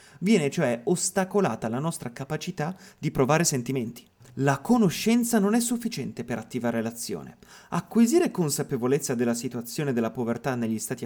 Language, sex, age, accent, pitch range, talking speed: Italian, male, 30-49, native, 120-165 Hz, 135 wpm